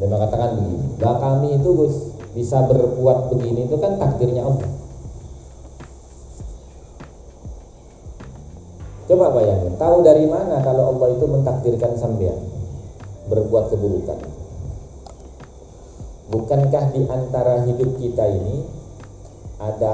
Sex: male